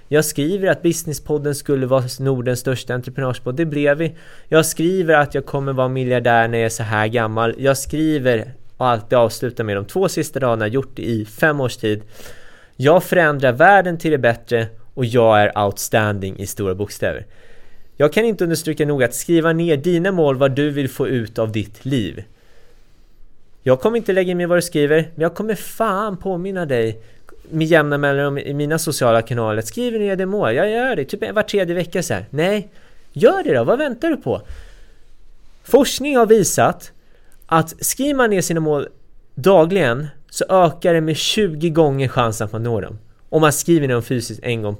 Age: 20-39